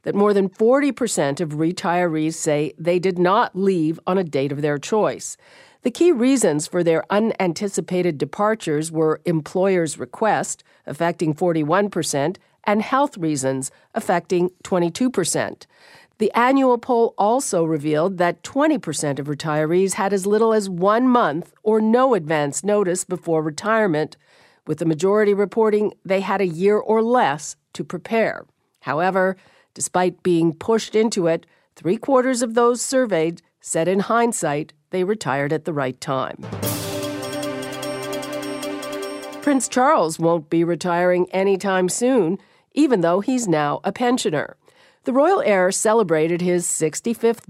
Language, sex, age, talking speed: English, female, 50-69, 135 wpm